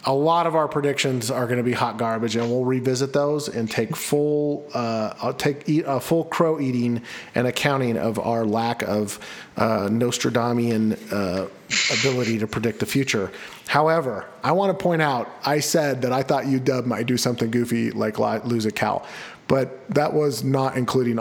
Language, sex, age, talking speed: English, male, 40-59, 185 wpm